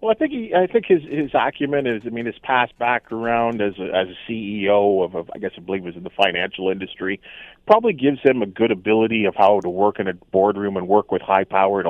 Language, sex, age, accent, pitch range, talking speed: English, male, 40-59, American, 100-130 Hz, 245 wpm